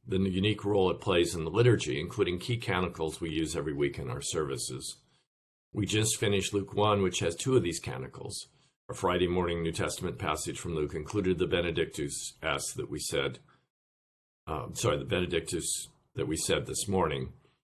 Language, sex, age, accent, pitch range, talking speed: English, male, 50-69, American, 80-105 Hz, 180 wpm